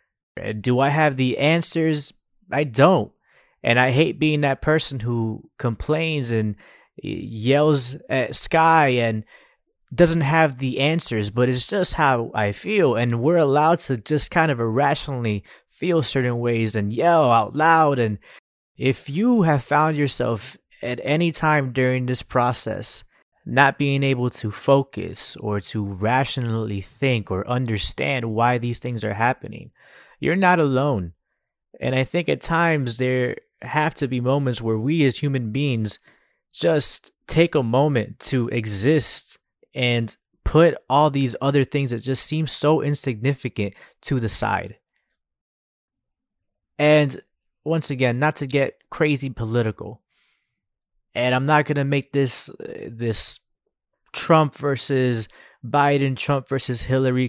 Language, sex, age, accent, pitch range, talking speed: English, male, 20-39, American, 115-150 Hz, 140 wpm